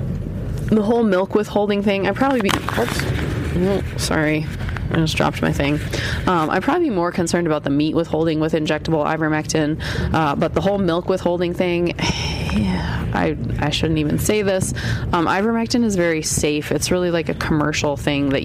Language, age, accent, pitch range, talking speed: English, 20-39, American, 150-180 Hz, 175 wpm